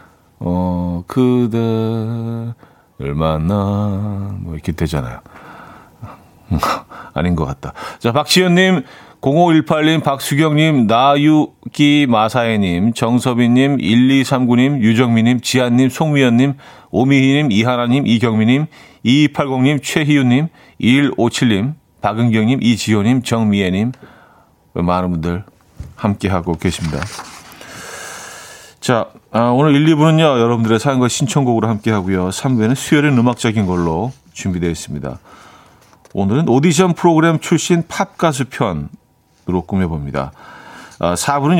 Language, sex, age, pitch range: Korean, male, 40-59, 100-140 Hz